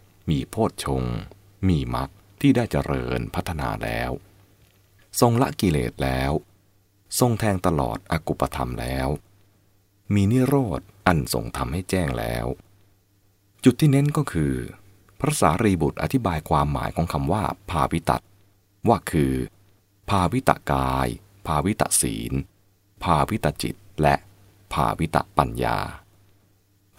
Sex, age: male, 30-49